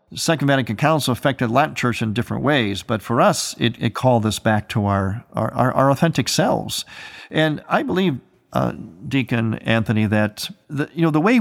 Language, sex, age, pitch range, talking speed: English, male, 50-69, 110-145 Hz, 190 wpm